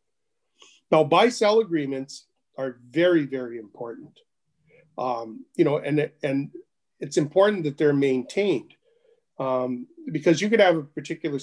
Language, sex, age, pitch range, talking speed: English, male, 40-59, 135-175 Hz, 130 wpm